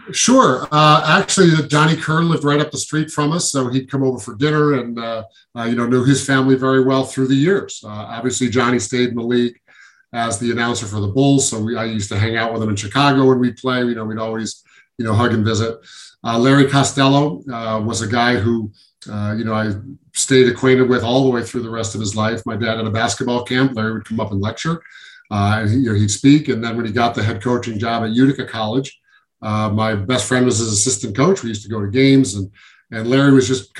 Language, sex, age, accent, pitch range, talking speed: English, male, 40-59, American, 110-130 Hz, 250 wpm